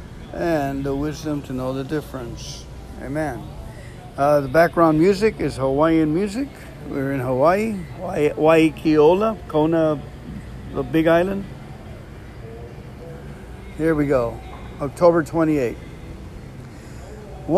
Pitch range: 135-165 Hz